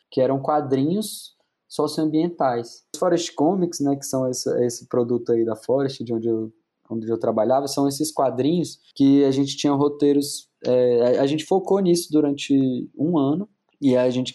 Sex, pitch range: male, 120-145 Hz